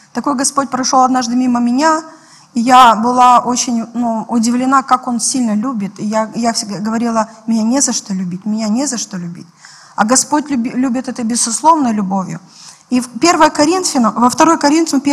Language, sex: Russian, female